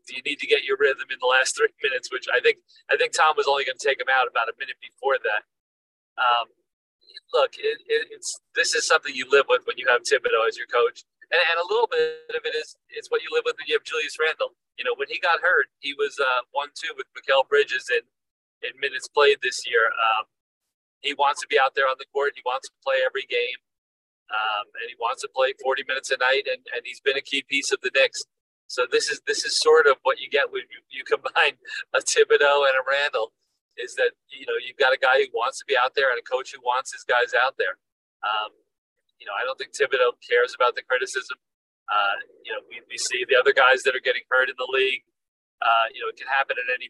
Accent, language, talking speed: American, English, 250 wpm